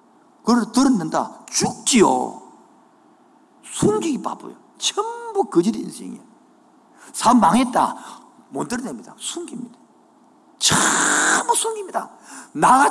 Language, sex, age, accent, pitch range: Korean, male, 50-69, native, 200-290 Hz